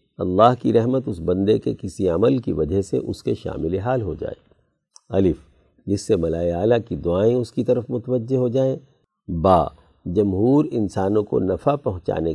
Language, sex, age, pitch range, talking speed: Urdu, male, 50-69, 85-120 Hz, 170 wpm